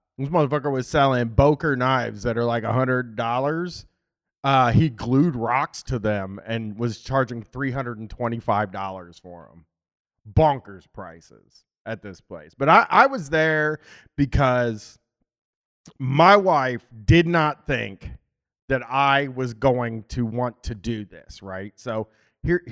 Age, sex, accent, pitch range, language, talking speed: 30-49, male, American, 105-155 Hz, English, 130 wpm